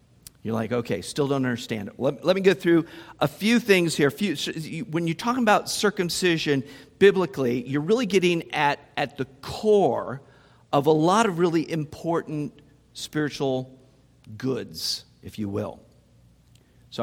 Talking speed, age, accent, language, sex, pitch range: 145 wpm, 50-69, American, English, male, 135-175 Hz